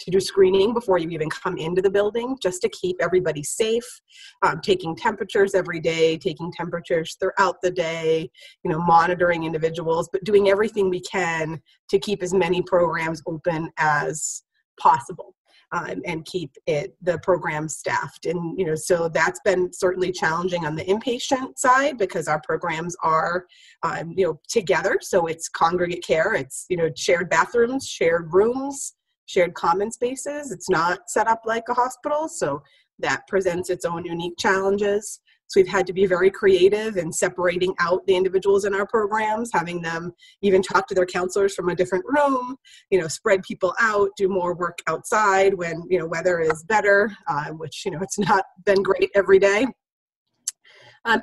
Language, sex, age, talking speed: English, female, 30-49, 175 wpm